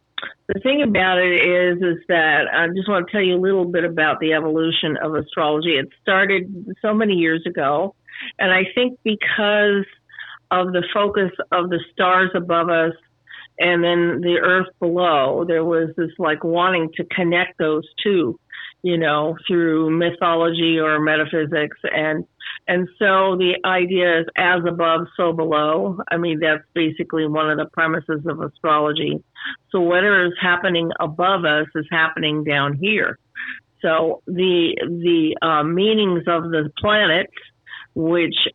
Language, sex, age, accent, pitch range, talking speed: English, female, 50-69, American, 160-185 Hz, 155 wpm